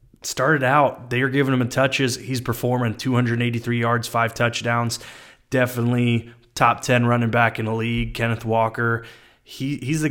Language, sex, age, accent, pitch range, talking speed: English, male, 20-39, American, 110-130 Hz, 160 wpm